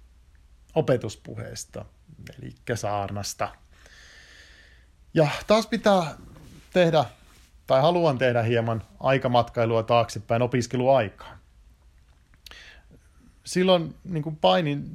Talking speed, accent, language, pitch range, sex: 65 wpm, native, Finnish, 110-135 Hz, male